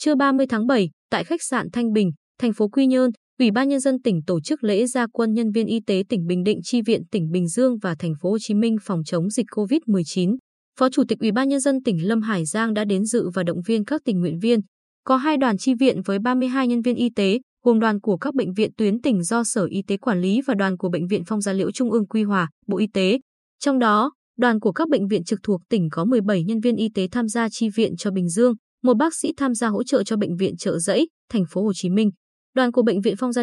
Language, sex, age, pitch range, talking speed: Vietnamese, female, 20-39, 195-250 Hz, 275 wpm